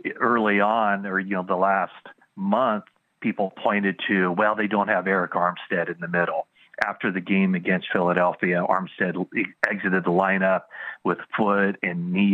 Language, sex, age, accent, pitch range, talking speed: English, male, 40-59, American, 95-105 Hz, 160 wpm